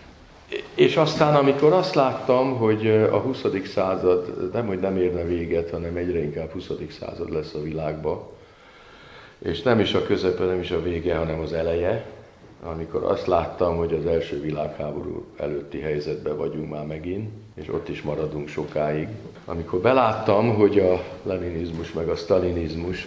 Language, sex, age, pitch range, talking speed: Hungarian, male, 50-69, 85-100 Hz, 155 wpm